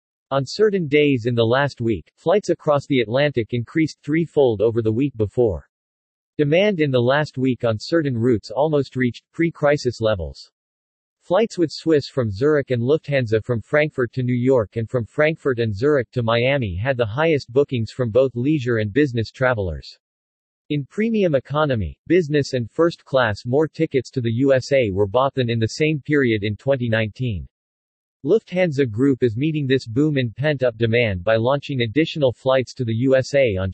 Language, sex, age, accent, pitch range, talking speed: English, male, 50-69, American, 115-150 Hz, 170 wpm